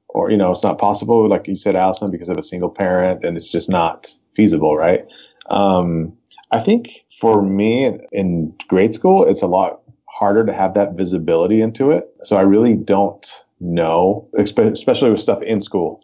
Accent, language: American, English